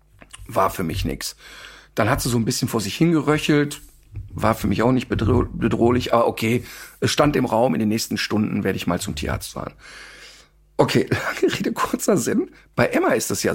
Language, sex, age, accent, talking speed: German, male, 50-69, German, 200 wpm